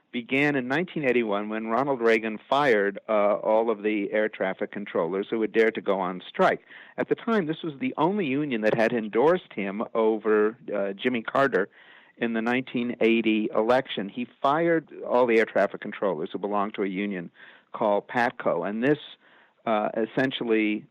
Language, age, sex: English, 50-69, male